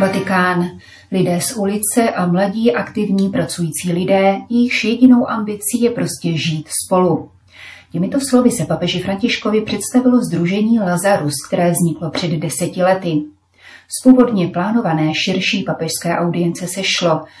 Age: 30-49